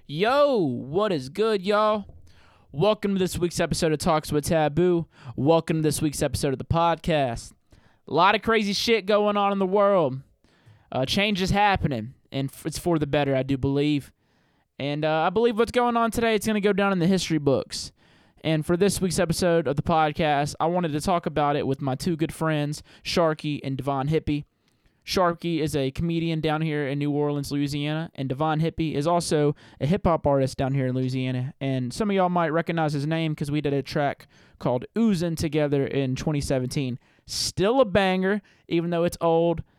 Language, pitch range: English, 140-175 Hz